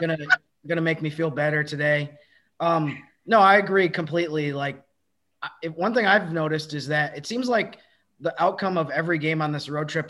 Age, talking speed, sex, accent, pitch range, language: 20-39, 190 wpm, male, American, 130-155 Hz, English